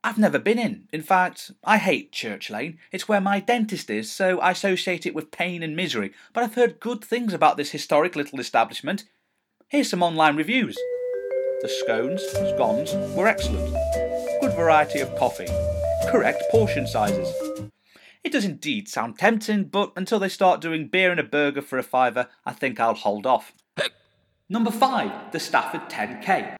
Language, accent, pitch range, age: English, British, 150-215 Hz, 30-49